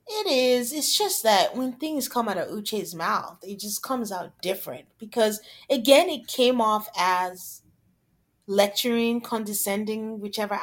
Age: 30-49